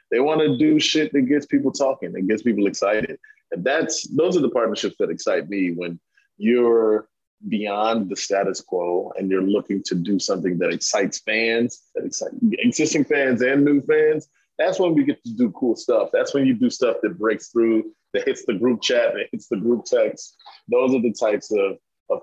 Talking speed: 205 wpm